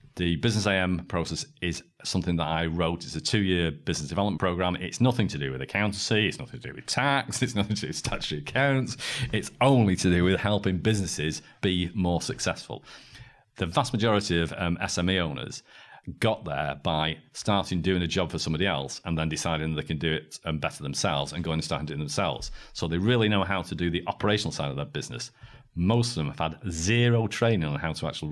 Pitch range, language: 85-105 Hz, English